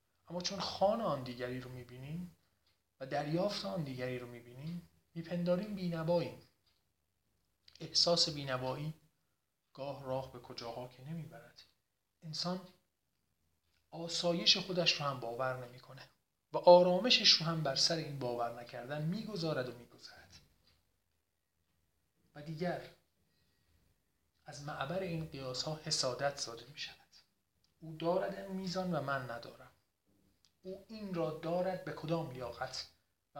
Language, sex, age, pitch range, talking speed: Persian, male, 40-59, 105-160 Hz, 120 wpm